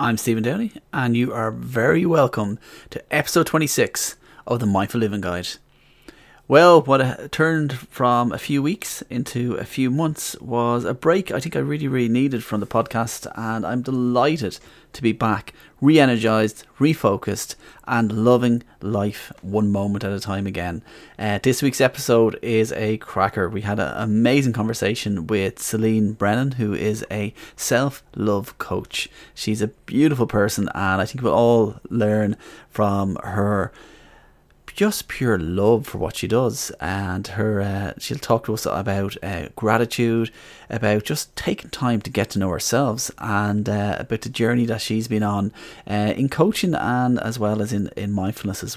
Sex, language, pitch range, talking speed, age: male, English, 100-125 Hz, 165 wpm, 30-49